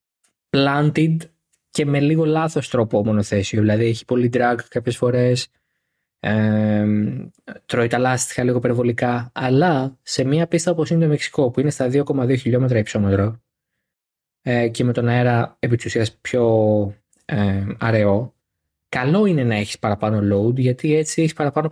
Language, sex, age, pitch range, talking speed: Greek, male, 20-39, 115-155 Hz, 135 wpm